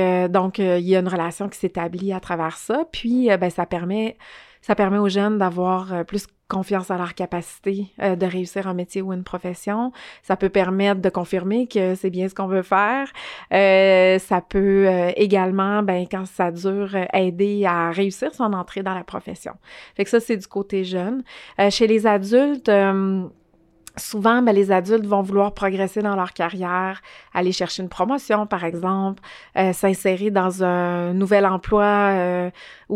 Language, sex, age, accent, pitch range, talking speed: French, female, 30-49, Canadian, 185-205 Hz, 185 wpm